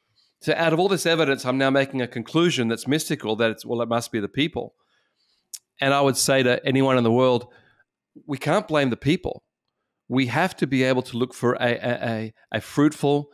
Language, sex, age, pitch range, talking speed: English, male, 40-59, 115-150 Hz, 215 wpm